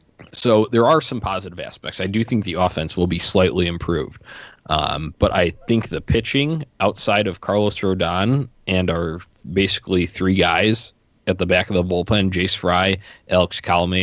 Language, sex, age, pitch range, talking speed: English, male, 20-39, 85-105 Hz, 170 wpm